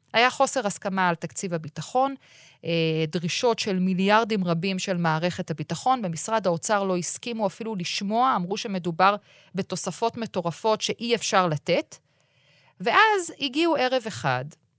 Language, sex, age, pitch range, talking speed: Hebrew, female, 30-49, 165-235 Hz, 120 wpm